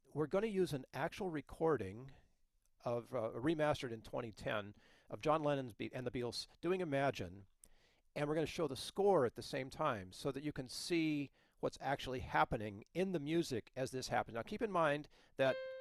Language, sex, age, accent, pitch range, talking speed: English, male, 50-69, American, 115-155 Hz, 195 wpm